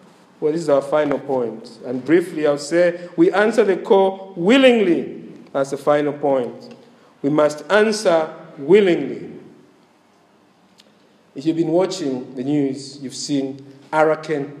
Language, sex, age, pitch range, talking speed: English, male, 50-69, 170-245 Hz, 130 wpm